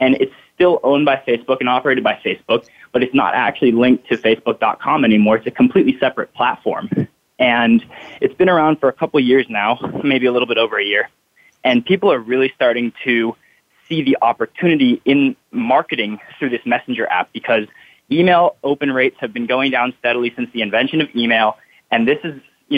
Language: English